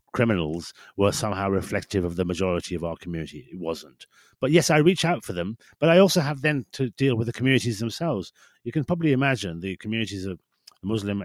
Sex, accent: male, British